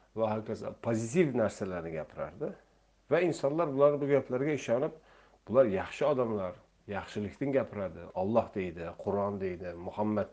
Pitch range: 100-130 Hz